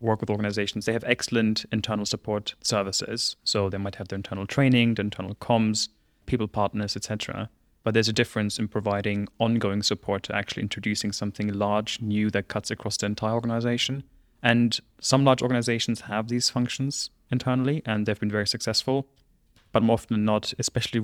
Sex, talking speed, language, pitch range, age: male, 175 wpm, English, 105-115 Hz, 20-39